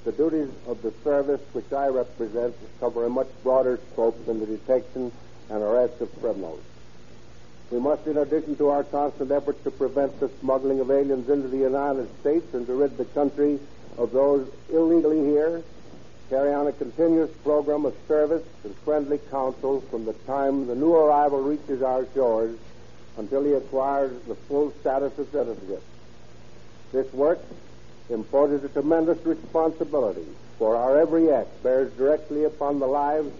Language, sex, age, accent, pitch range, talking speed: English, male, 60-79, American, 120-150 Hz, 160 wpm